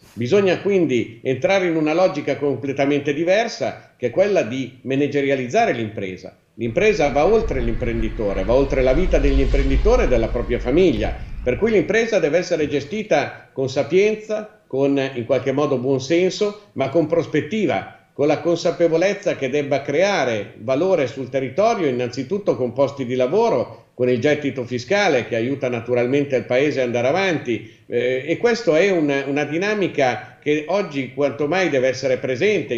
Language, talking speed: Italian, 155 wpm